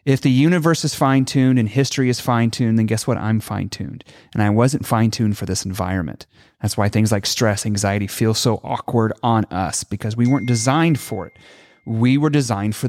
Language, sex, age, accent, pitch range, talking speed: English, male, 30-49, American, 110-135 Hz, 215 wpm